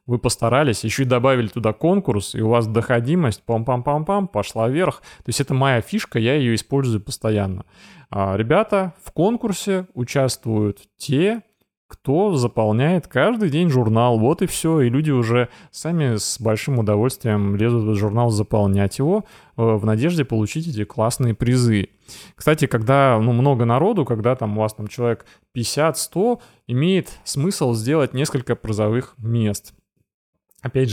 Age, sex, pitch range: 20-39, male, 110-140 Hz